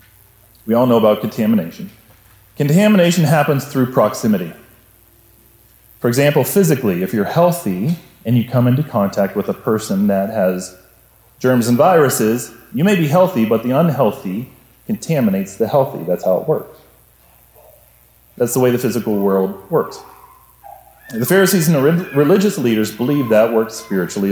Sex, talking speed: male, 145 wpm